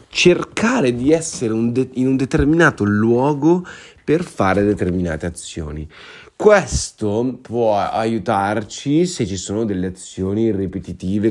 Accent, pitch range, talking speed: native, 95-120 Hz, 115 wpm